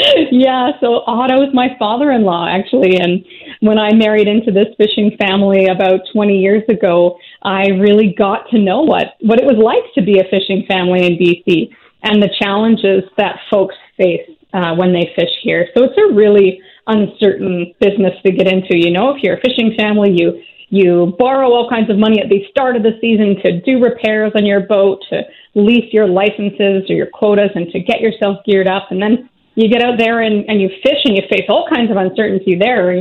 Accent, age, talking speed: American, 30-49, 205 wpm